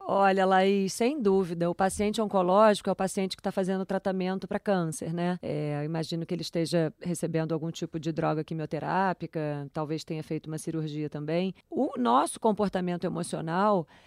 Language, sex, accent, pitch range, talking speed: Portuguese, female, Brazilian, 170-220 Hz, 160 wpm